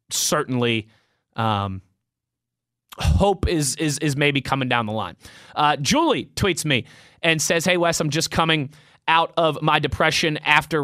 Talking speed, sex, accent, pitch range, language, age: 150 wpm, male, American, 130-170 Hz, English, 20-39